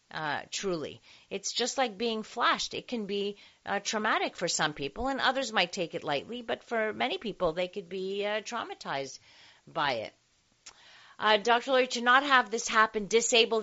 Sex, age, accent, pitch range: female, 40-59, American, 160-225 Hz